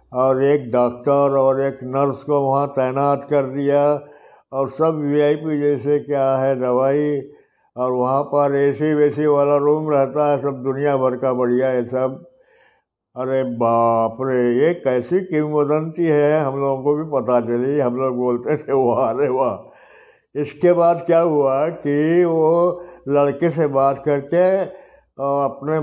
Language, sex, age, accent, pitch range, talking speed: Hindi, male, 60-79, native, 130-155 Hz, 150 wpm